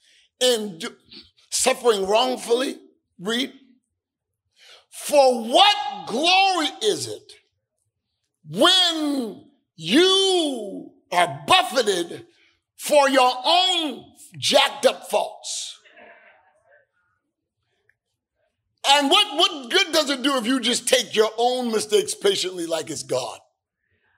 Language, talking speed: English, 90 wpm